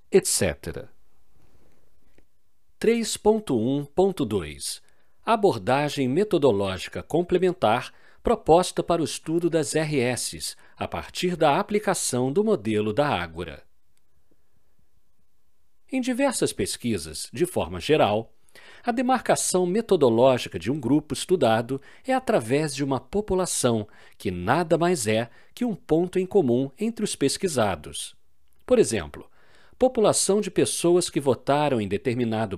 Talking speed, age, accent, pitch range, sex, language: 105 wpm, 50-69, Brazilian, 120-195 Hz, male, Portuguese